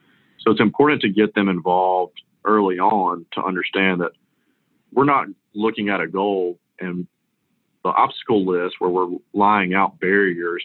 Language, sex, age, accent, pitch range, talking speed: English, male, 40-59, American, 90-105 Hz, 150 wpm